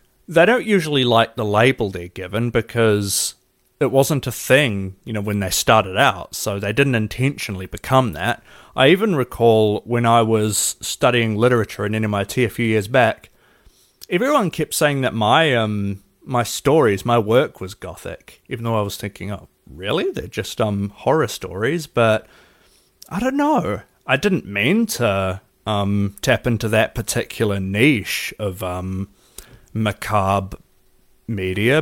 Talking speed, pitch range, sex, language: 155 wpm, 100-130 Hz, male, English